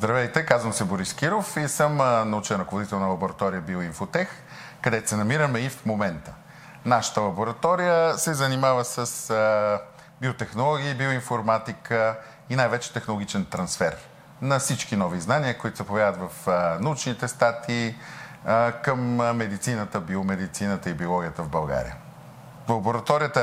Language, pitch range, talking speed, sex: Bulgarian, 100-135 Hz, 120 wpm, male